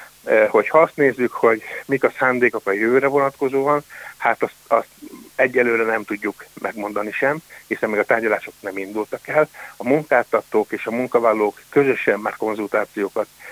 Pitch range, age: 110-130 Hz, 60-79